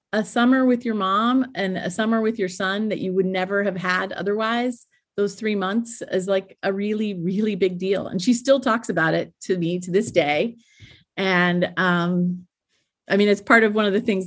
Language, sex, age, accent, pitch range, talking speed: English, female, 30-49, American, 170-220 Hz, 210 wpm